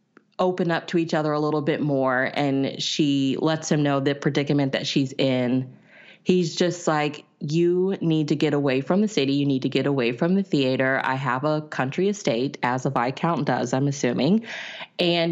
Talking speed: 195 wpm